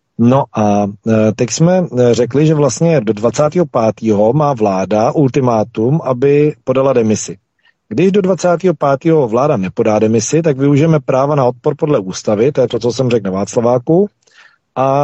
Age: 40-59